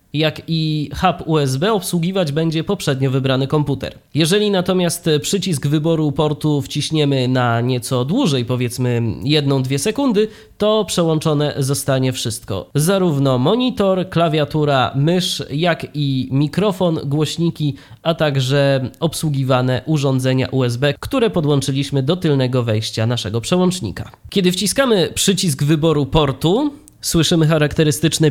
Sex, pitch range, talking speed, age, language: male, 110-160 Hz, 110 wpm, 20-39, Polish